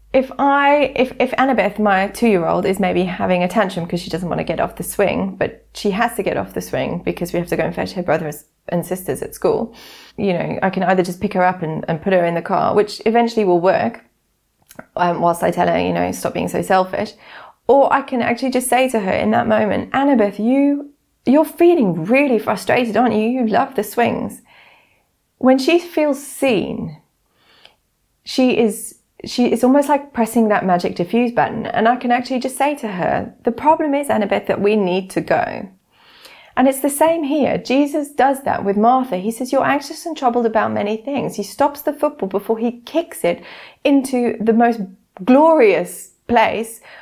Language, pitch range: English, 200-265 Hz